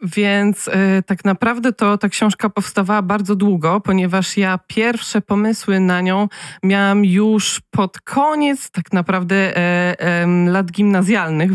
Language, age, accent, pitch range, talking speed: Polish, 20-39, native, 190-220 Hz, 135 wpm